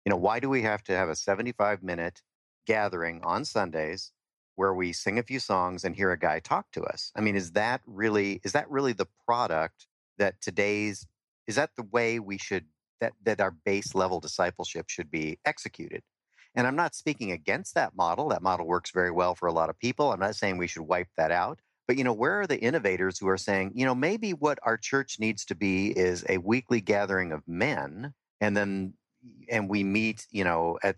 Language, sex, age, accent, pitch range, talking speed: English, male, 50-69, American, 95-115 Hz, 210 wpm